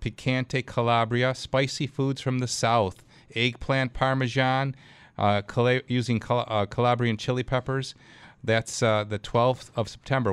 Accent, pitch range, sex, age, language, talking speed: American, 110-135 Hz, male, 40-59, English, 135 wpm